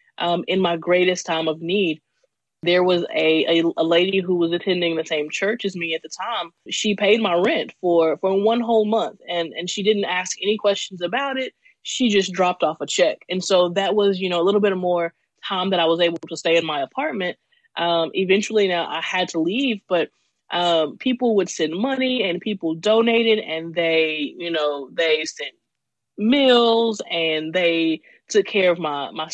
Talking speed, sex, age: 200 wpm, female, 20-39